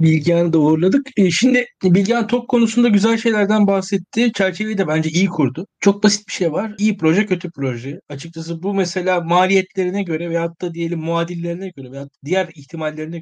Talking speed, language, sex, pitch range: 170 wpm, Turkish, male, 140-180 Hz